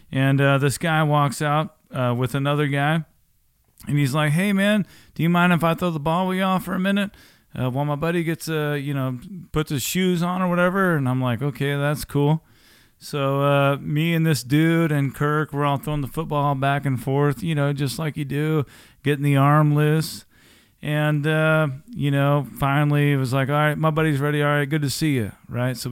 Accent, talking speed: American, 220 wpm